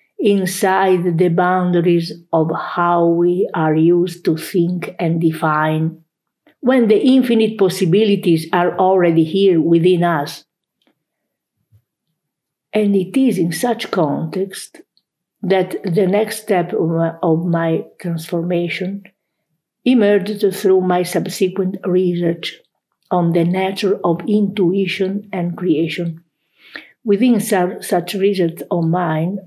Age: 50-69